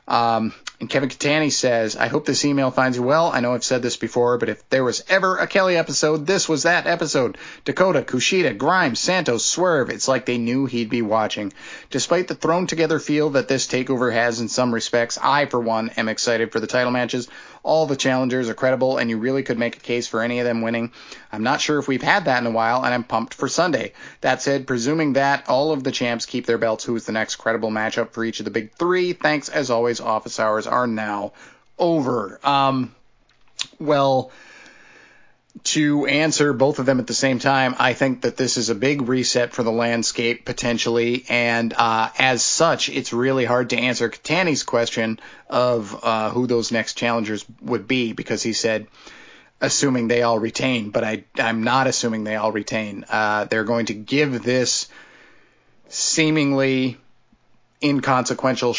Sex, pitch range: male, 115-135 Hz